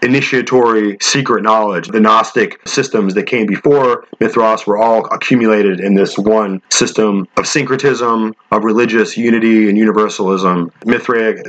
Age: 30-49